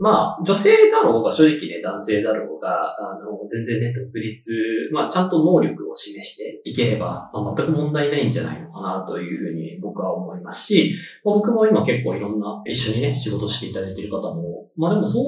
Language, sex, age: Japanese, male, 20-39